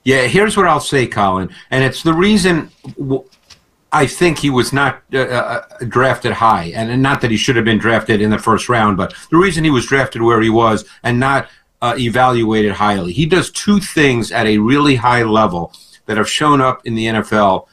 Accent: American